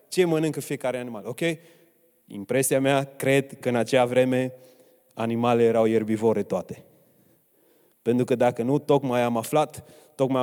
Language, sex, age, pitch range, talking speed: Romanian, male, 20-39, 120-150 Hz, 140 wpm